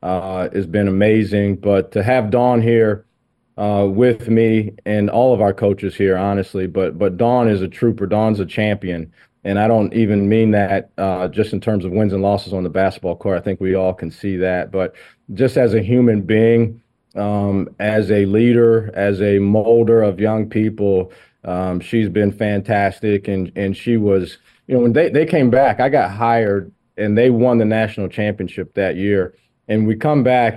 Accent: American